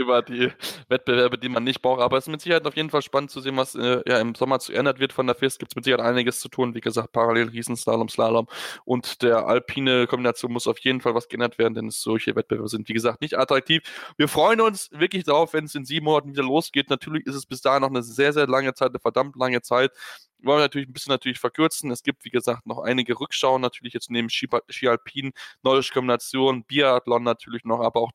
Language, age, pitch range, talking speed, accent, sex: German, 10-29, 125-145 Hz, 240 wpm, German, male